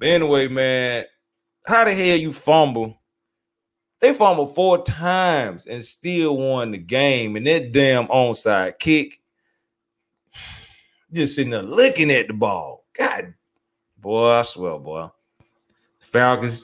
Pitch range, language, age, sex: 105-140 Hz, English, 30-49, male